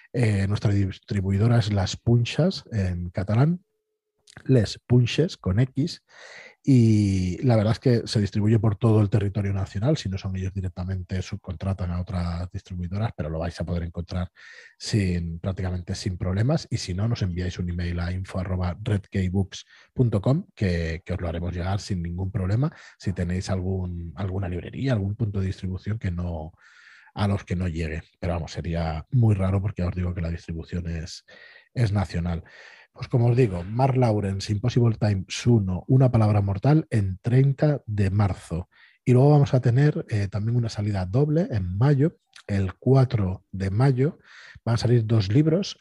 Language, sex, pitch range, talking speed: Spanish, male, 90-120 Hz, 170 wpm